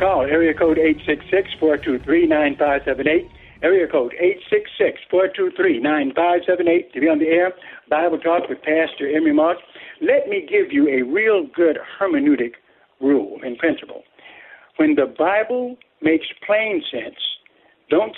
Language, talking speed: English, 130 wpm